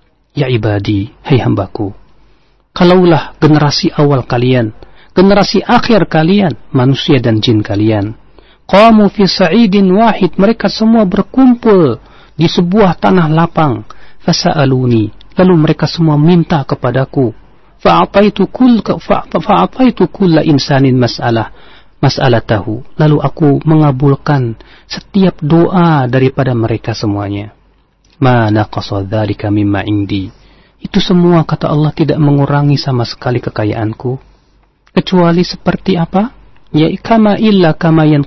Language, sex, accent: Indonesian, male, native